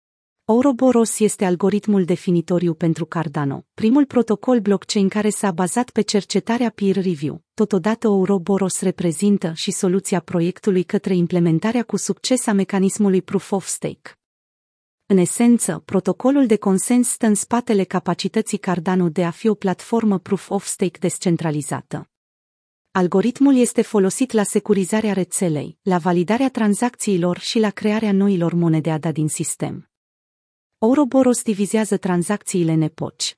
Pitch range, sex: 175-220 Hz, female